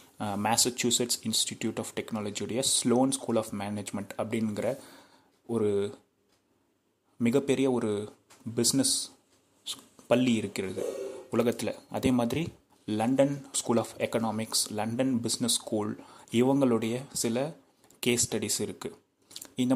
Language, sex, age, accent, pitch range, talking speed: Tamil, male, 30-49, native, 110-130 Hz, 95 wpm